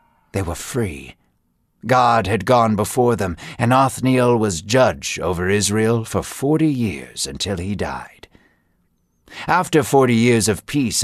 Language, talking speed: English, 135 wpm